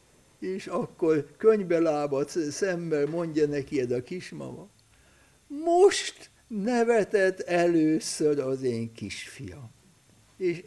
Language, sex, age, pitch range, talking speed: Hungarian, male, 60-79, 155-255 Hz, 85 wpm